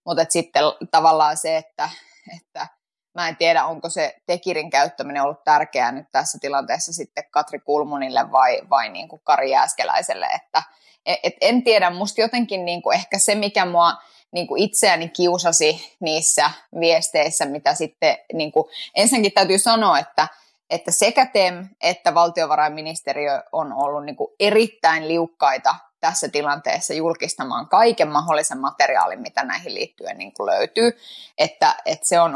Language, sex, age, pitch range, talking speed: Finnish, female, 20-39, 150-190 Hz, 145 wpm